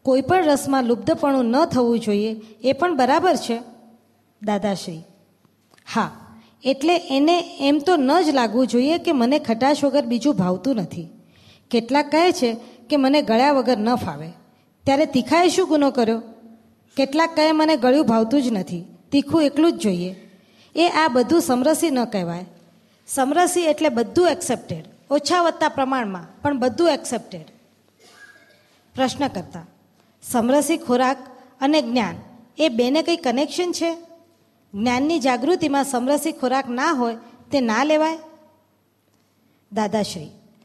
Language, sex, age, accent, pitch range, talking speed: Gujarati, female, 20-39, native, 235-315 Hz, 115 wpm